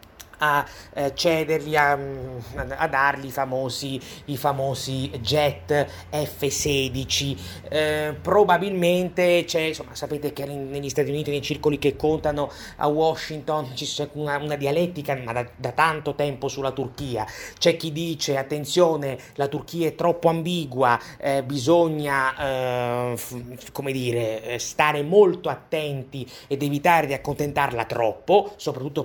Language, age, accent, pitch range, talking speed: Italian, 30-49, native, 135-170 Hz, 125 wpm